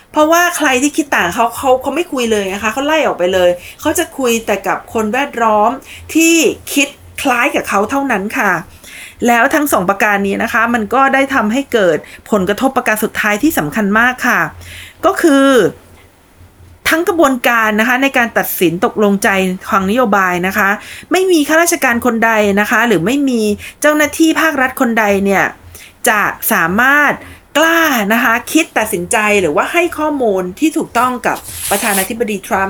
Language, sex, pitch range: Thai, female, 210-280 Hz